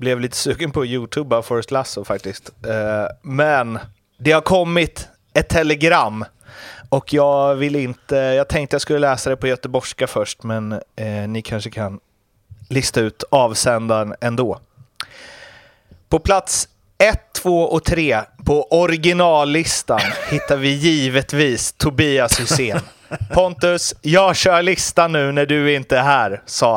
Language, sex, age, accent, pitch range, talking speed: Swedish, male, 30-49, native, 125-160 Hz, 135 wpm